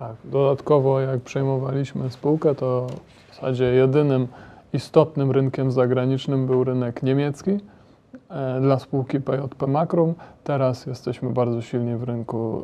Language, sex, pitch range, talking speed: Polish, male, 125-140 Hz, 120 wpm